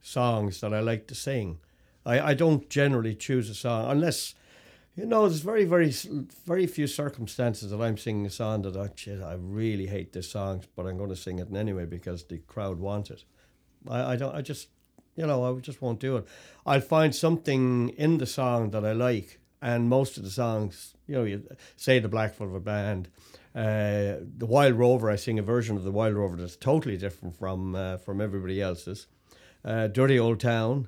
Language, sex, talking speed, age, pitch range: English, male, 205 wpm, 60-79, 100-125 Hz